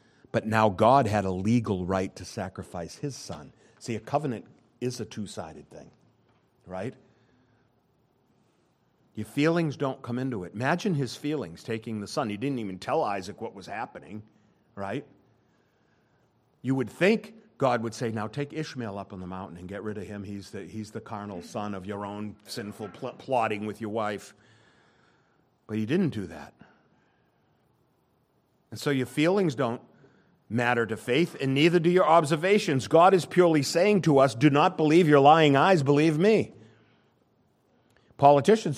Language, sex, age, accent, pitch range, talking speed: English, male, 50-69, American, 110-155 Hz, 160 wpm